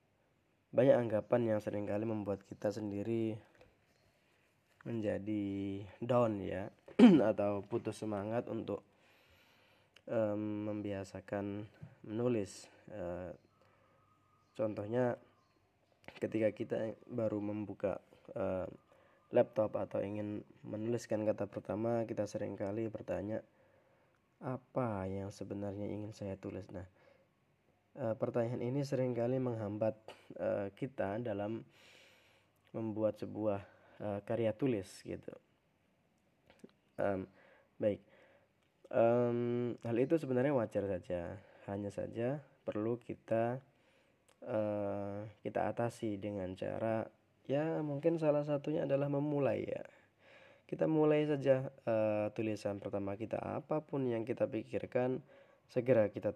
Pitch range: 100-120 Hz